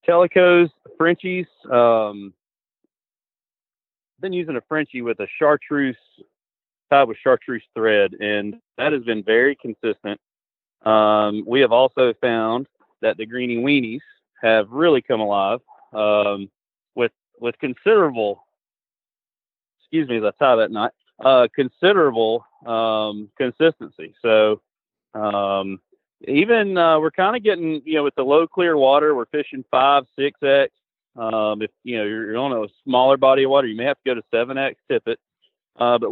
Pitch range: 115-150 Hz